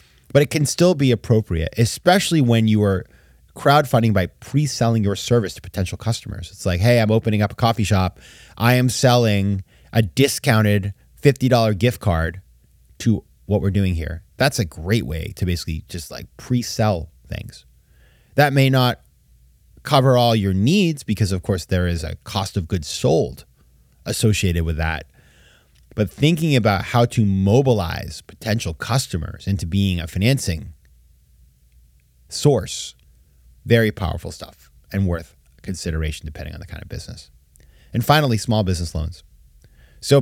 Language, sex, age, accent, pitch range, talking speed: English, male, 30-49, American, 85-120 Hz, 150 wpm